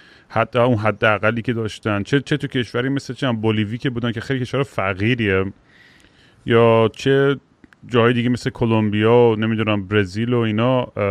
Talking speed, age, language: 160 wpm, 30-49, Persian